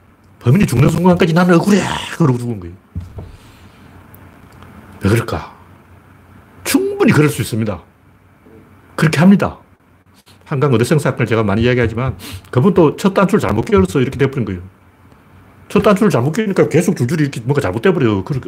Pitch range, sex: 95-135 Hz, male